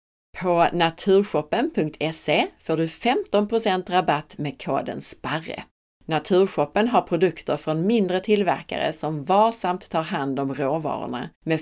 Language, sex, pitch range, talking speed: Swedish, female, 150-205 Hz, 115 wpm